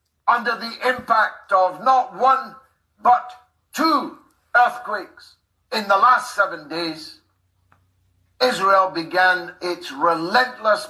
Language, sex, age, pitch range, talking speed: English, male, 60-79, 160-235 Hz, 100 wpm